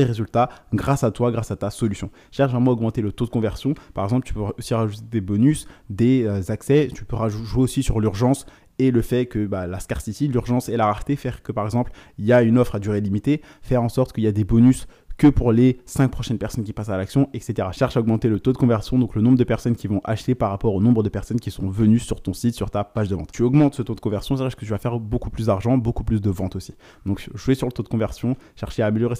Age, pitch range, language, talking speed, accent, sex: 20-39, 105-125 Hz, French, 280 wpm, French, male